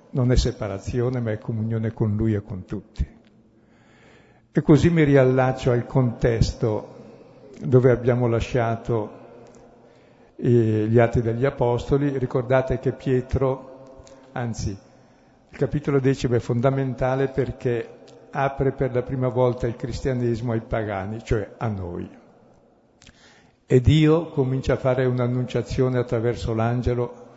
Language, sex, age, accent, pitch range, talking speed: Italian, male, 60-79, native, 115-130 Hz, 120 wpm